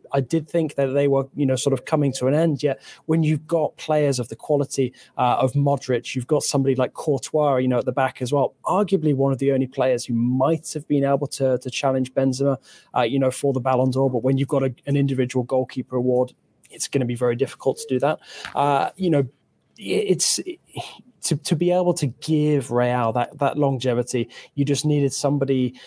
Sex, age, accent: male, 20-39, British